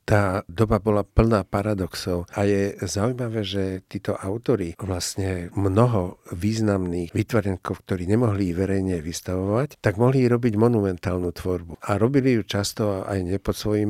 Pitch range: 90-105 Hz